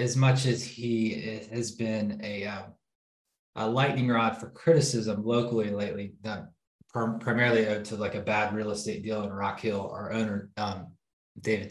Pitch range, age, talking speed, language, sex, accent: 100-125 Hz, 20-39, 165 wpm, English, male, American